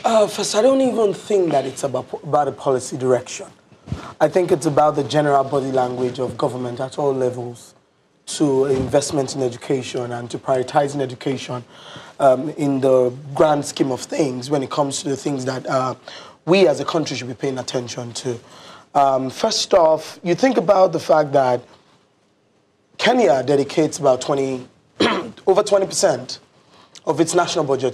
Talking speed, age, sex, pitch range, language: 165 wpm, 30-49, male, 130-160 Hz, English